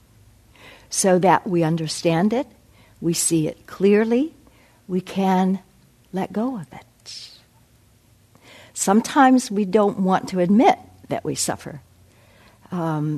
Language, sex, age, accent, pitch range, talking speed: English, female, 60-79, American, 160-235 Hz, 115 wpm